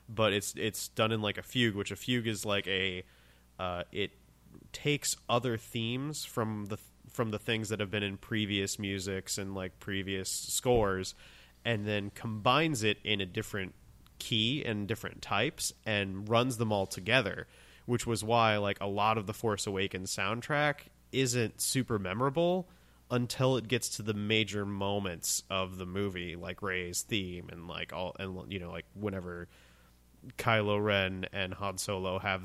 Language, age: English, 30-49